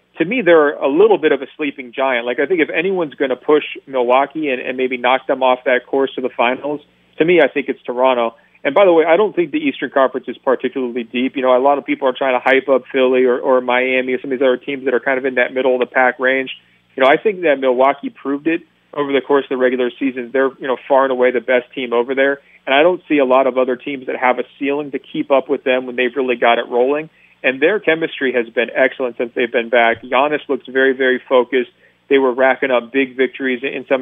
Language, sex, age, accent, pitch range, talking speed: English, male, 40-59, American, 125-140 Hz, 270 wpm